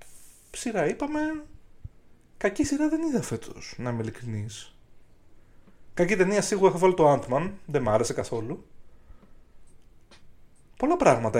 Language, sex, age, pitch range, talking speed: Greek, male, 30-49, 115-155 Hz, 120 wpm